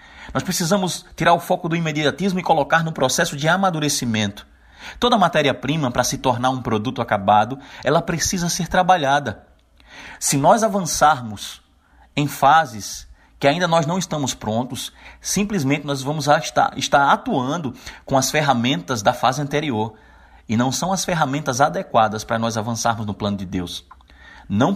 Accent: Brazilian